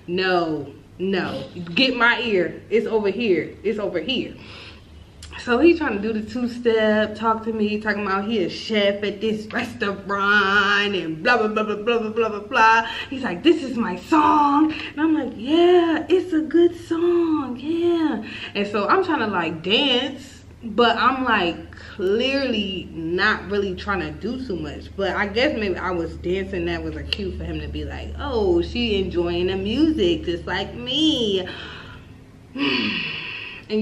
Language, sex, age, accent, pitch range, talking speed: English, female, 20-39, American, 170-240 Hz, 170 wpm